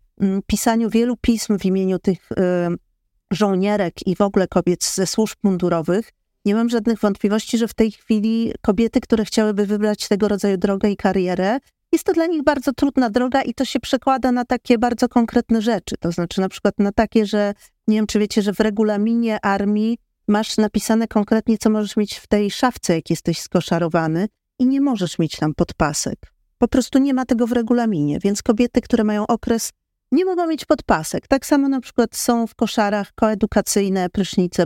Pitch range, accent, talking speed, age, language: 195-240 Hz, native, 180 wpm, 40-59, Polish